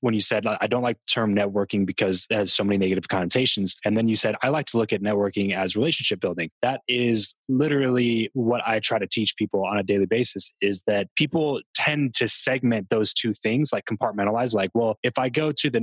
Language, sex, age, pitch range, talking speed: English, male, 20-39, 100-120 Hz, 230 wpm